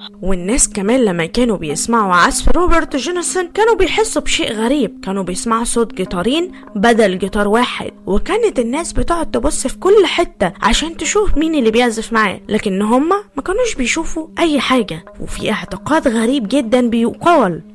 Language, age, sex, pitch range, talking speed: Arabic, 20-39, female, 210-310 Hz, 145 wpm